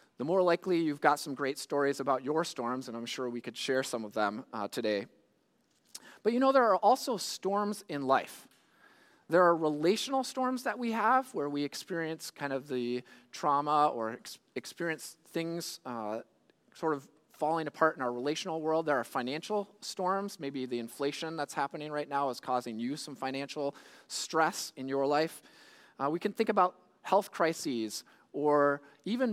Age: 30-49